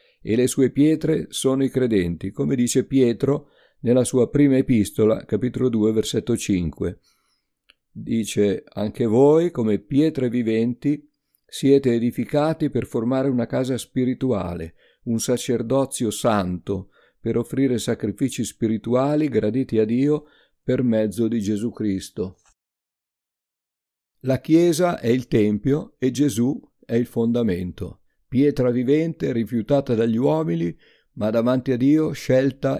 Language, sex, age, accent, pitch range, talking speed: Italian, male, 50-69, native, 110-140 Hz, 120 wpm